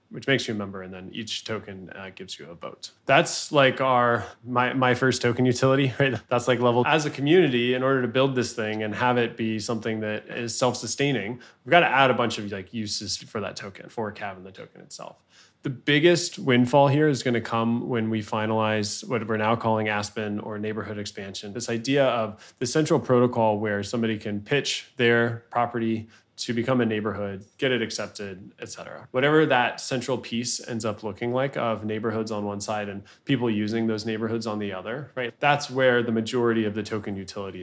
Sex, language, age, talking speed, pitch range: male, English, 20-39, 210 wpm, 105-125 Hz